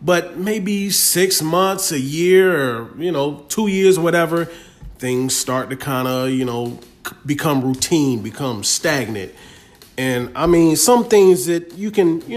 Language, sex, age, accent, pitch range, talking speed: English, male, 30-49, American, 135-175 Hz, 160 wpm